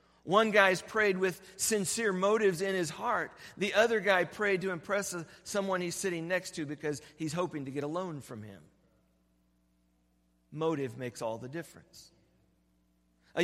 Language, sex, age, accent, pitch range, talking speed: English, male, 50-69, American, 120-195 Hz, 155 wpm